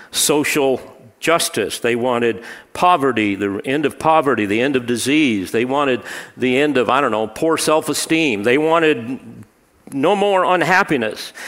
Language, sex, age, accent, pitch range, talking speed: English, male, 50-69, American, 120-160 Hz, 145 wpm